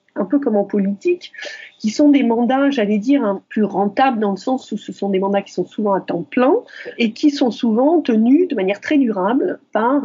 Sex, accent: female, French